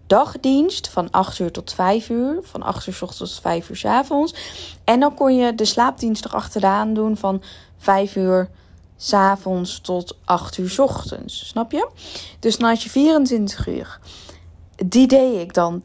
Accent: Dutch